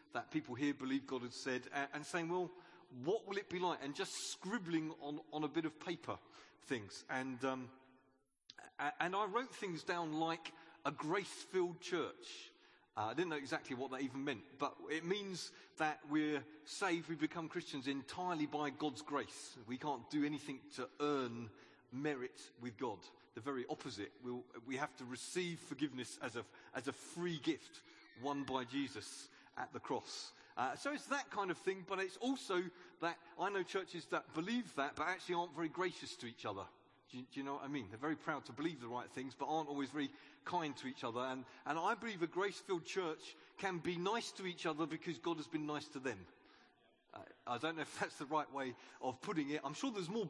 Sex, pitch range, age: male, 135-180 Hz, 40-59